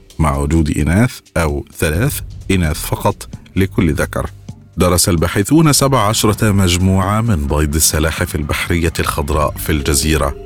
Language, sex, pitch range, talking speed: Arabic, male, 80-100 Hz, 120 wpm